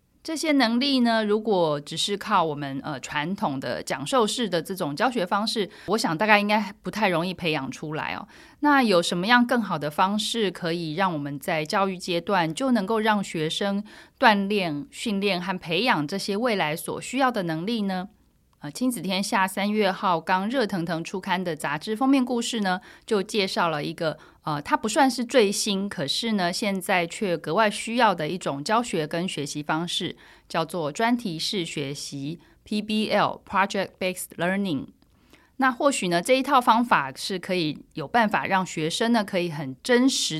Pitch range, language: 165-220 Hz, Chinese